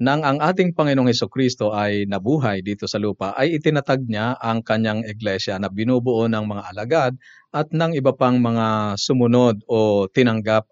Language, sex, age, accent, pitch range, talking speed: Filipino, male, 50-69, native, 115-135 Hz, 160 wpm